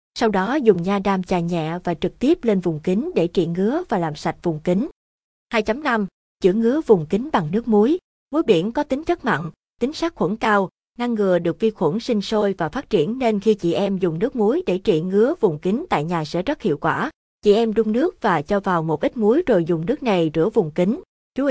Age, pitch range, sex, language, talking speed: 20-39, 175-230 Hz, female, Vietnamese, 235 wpm